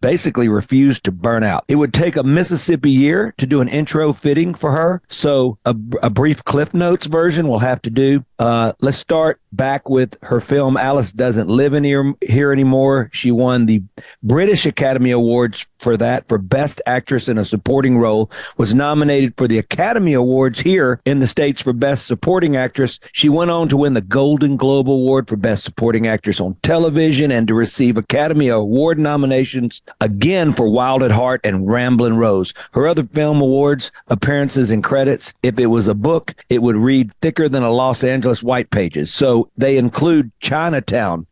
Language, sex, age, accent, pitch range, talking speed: English, male, 50-69, American, 115-145 Hz, 185 wpm